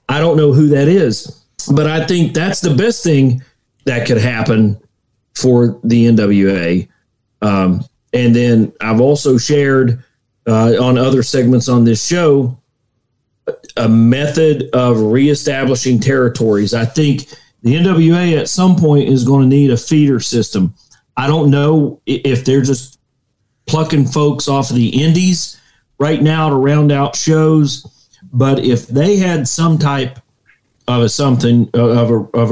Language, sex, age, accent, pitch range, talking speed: English, male, 40-59, American, 120-145 Hz, 150 wpm